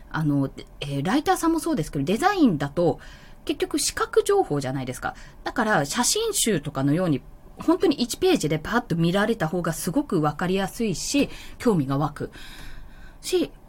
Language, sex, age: Japanese, female, 20-39